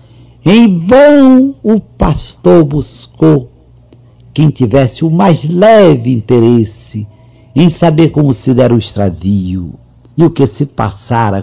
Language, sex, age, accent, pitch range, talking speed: Portuguese, male, 60-79, Brazilian, 115-155 Hz, 120 wpm